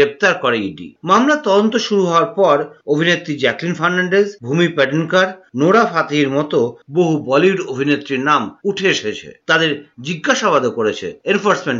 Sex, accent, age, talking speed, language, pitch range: male, native, 50-69, 130 wpm, Bengali, 145-200 Hz